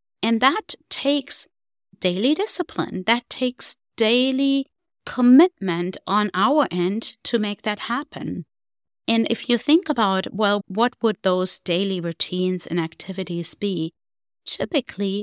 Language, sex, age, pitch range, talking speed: English, female, 30-49, 180-235 Hz, 120 wpm